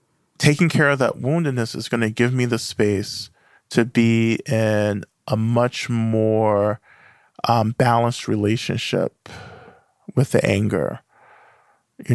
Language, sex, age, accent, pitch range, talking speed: English, male, 40-59, American, 110-130 Hz, 125 wpm